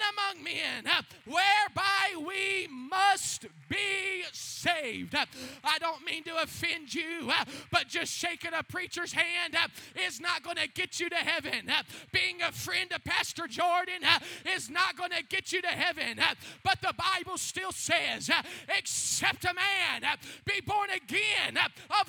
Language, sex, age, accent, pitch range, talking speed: English, male, 20-39, American, 275-360 Hz, 145 wpm